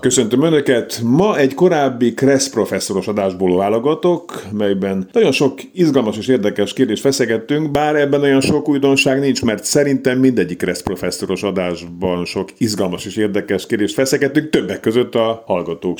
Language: Hungarian